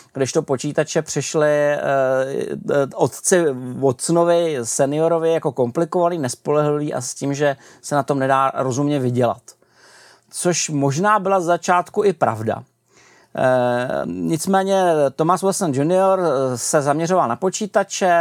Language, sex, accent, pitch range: Czech, male, native, 135-175 Hz